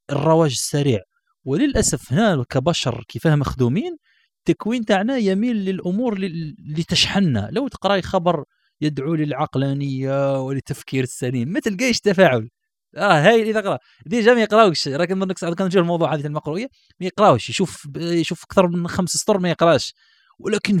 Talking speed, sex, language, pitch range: 135 wpm, male, Arabic, 140-205 Hz